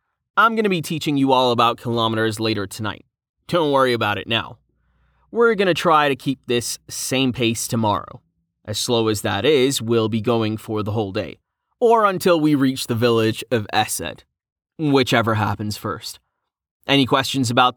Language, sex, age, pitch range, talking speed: English, male, 30-49, 110-145 Hz, 175 wpm